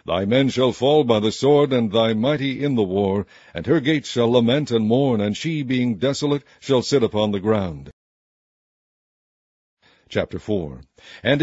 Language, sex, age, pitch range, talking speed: English, male, 60-79, 115-140 Hz, 170 wpm